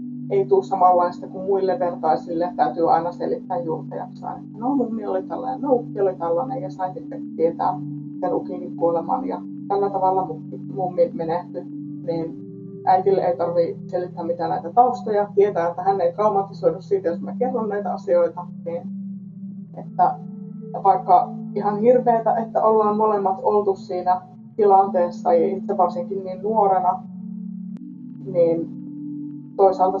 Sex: female